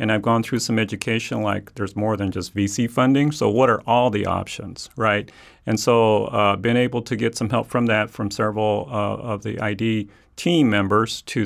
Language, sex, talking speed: English, male, 215 wpm